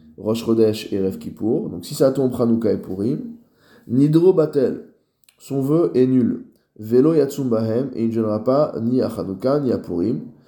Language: French